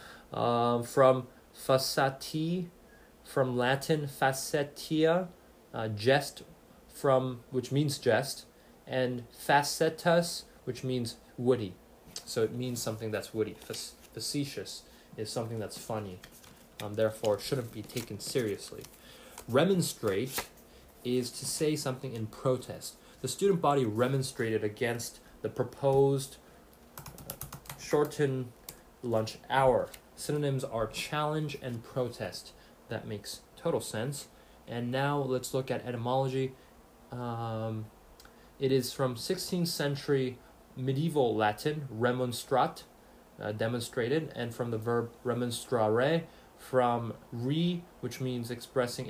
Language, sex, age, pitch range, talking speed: English, male, 20-39, 115-140 Hz, 110 wpm